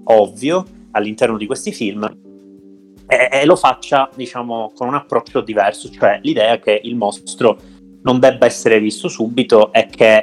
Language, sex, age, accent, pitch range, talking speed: Italian, male, 30-49, native, 100-120 Hz, 155 wpm